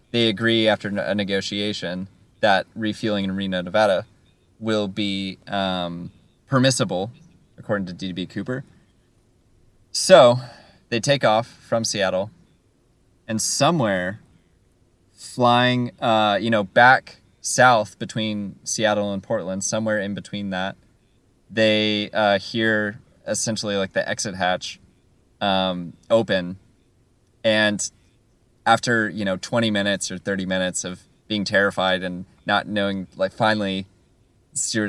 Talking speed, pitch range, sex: 115 wpm, 95-115 Hz, male